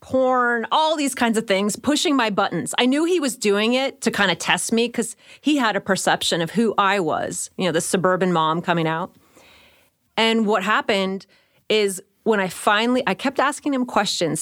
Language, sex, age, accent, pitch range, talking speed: English, female, 30-49, American, 185-240 Hz, 200 wpm